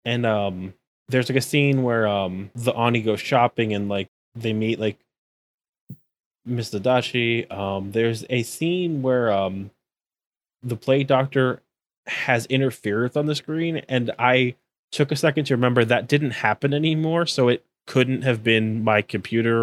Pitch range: 110-130 Hz